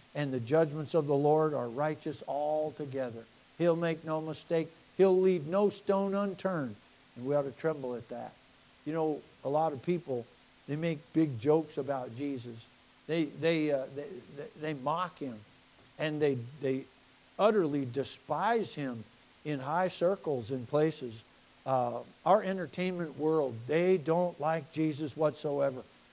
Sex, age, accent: male, 60-79, American